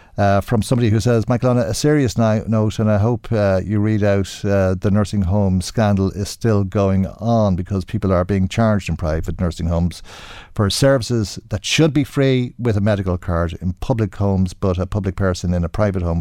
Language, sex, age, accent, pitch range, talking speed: English, male, 50-69, Irish, 100-130 Hz, 205 wpm